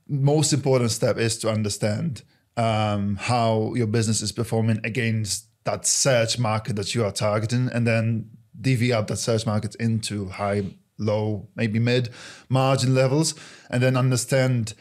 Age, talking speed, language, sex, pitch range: 20-39, 145 wpm, English, male, 105-125 Hz